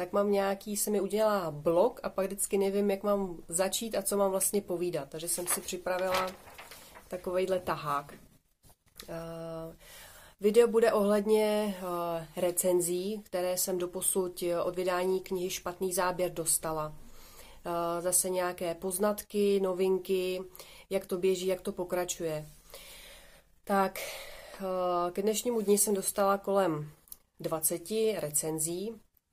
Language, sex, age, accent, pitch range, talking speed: Czech, female, 30-49, native, 170-195 Hz, 125 wpm